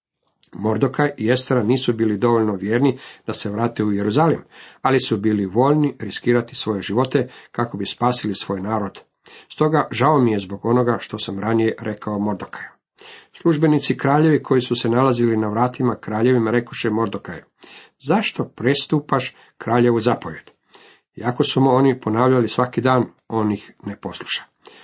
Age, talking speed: 50-69, 145 wpm